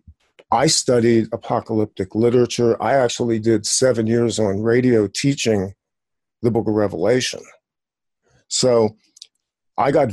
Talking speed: 115 wpm